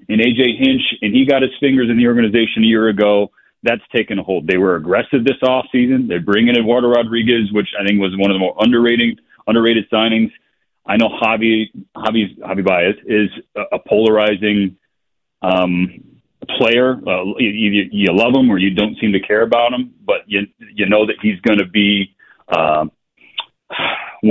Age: 40-59